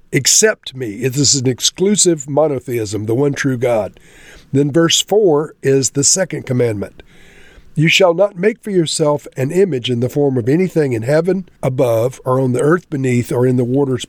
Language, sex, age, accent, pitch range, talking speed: English, male, 50-69, American, 125-155 Hz, 185 wpm